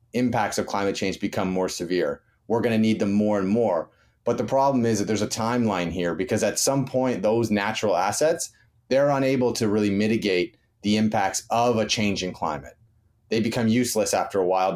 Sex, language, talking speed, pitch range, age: male, English, 195 wpm, 95-115 Hz, 30-49